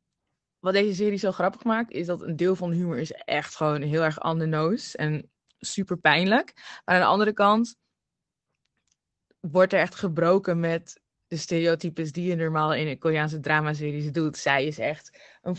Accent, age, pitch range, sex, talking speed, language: Dutch, 20-39, 160-200 Hz, female, 175 wpm, Dutch